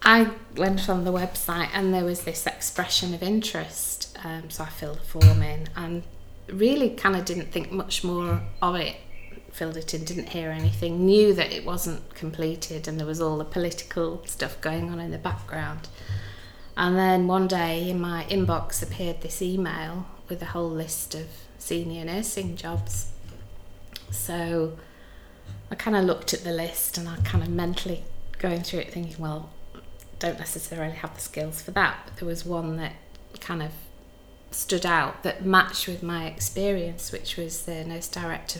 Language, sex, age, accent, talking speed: English, female, 30-49, British, 175 wpm